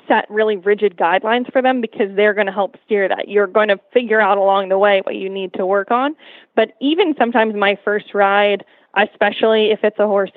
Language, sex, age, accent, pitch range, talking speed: English, female, 20-39, American, 205-245 Hz, 215 wpm